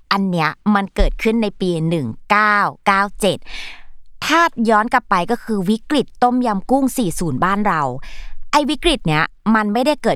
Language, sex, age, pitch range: Thai, female, 20-39, 185-255 Hz